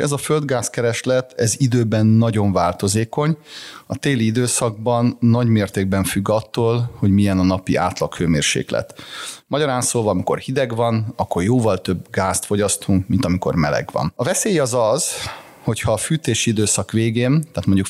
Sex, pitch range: male, 100-130 Hz